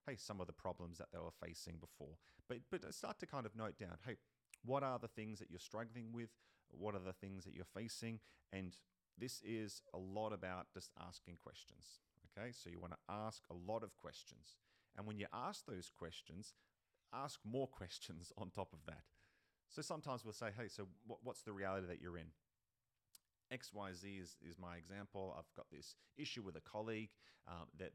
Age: 30-49